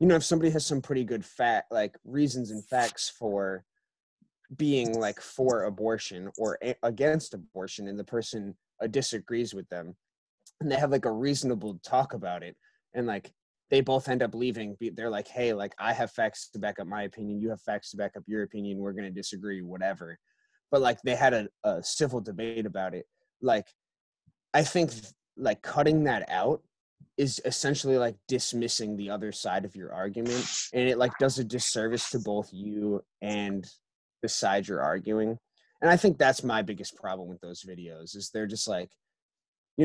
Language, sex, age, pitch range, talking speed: English, male, 20-39, 105-135 Hz, 190 wpm